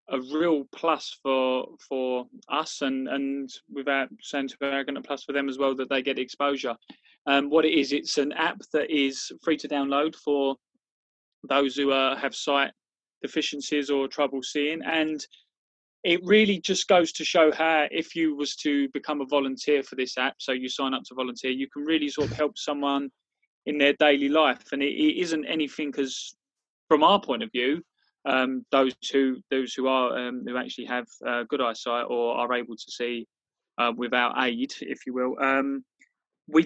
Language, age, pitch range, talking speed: English, 20-39, 130-150 Hz, 190 wpm